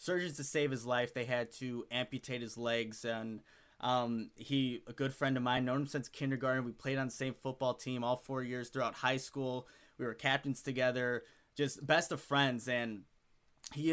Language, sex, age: English, male, 20-39